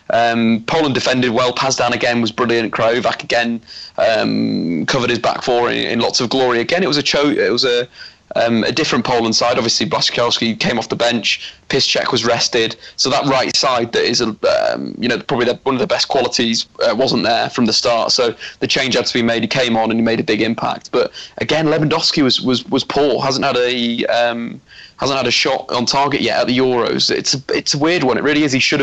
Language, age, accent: English, 30-49, British